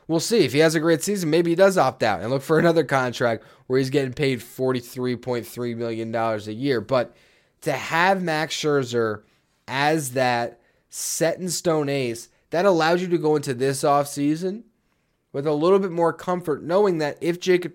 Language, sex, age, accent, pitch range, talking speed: English, male, 20-39, American, 120-155 Hz, 180 wpm